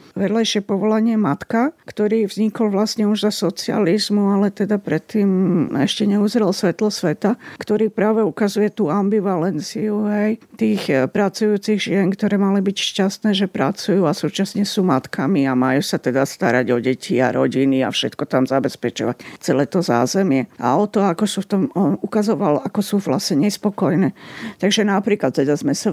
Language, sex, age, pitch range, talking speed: Slovak, female, 50-69, 170-220 Hz, 155 wpm